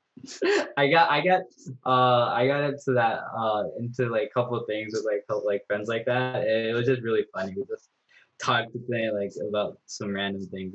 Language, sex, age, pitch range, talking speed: Telugu, male, 10-29, 105-135 Hz, 210 wpm